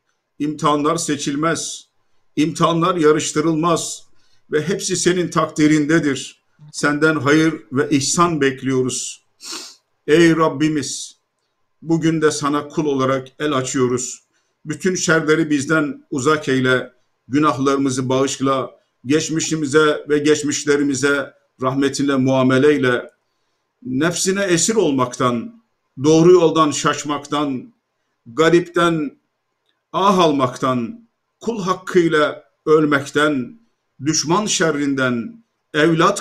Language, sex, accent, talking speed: Turkish, male, native, 80 wpm